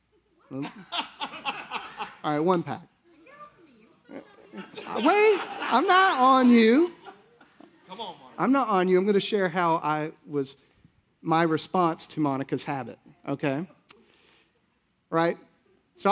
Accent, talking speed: American, 115 wpm